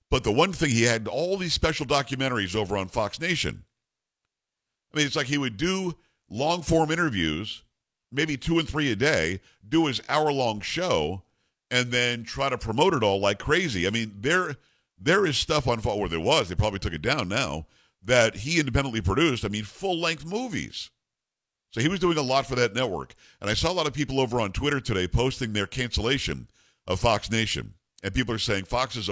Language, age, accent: English, 50-69, American